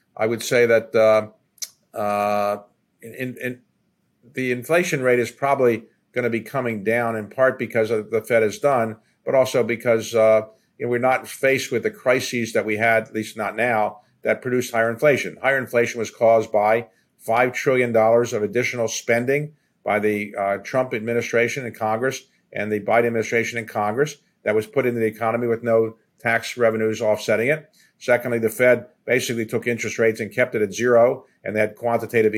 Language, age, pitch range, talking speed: English, 50-69, 110-125 Hz, 185 wpm